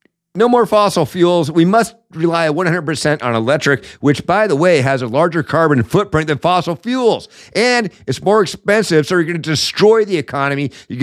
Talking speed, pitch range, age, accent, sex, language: 185 wpm, 120-170 Hz, 50-69, American, male, English